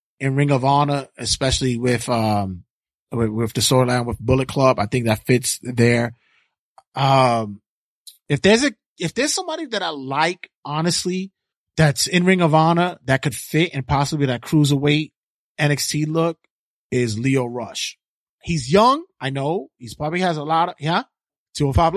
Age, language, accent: 30-49, English, American